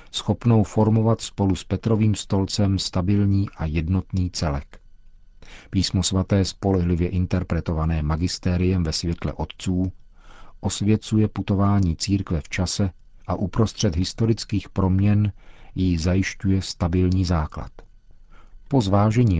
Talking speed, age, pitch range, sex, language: 100 wpm, 50-69, 90-105 Hz, male, Czech